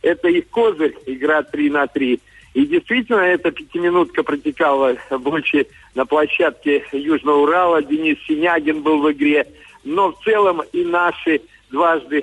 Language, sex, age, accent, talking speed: Russian, male, 50-69, native, 135 wpm